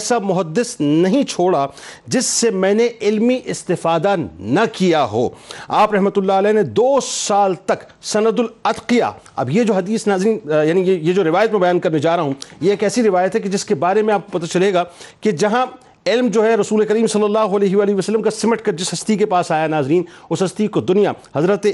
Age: 50-69